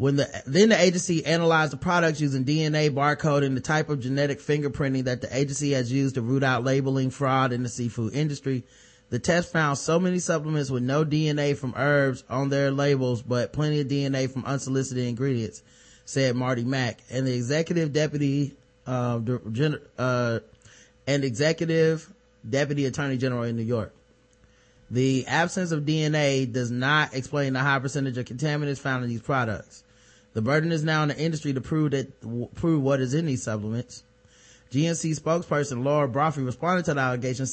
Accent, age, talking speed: American, 20-39, 175 wpm